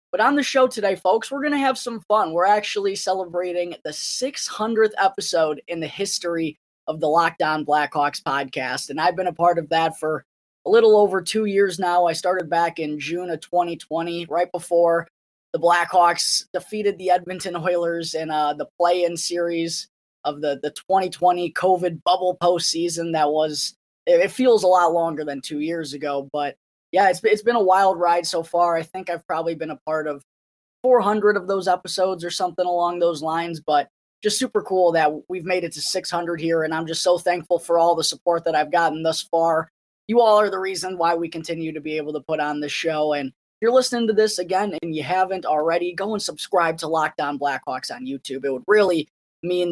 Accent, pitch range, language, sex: American, 160-190 Hz, English, female